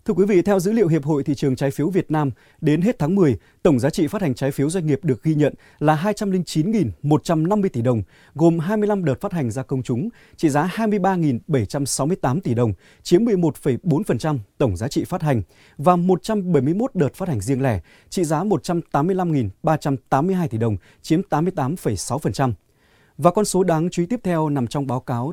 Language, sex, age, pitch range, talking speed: Vietnamese, male, 20-39, 130-180 Hz, 190 wpm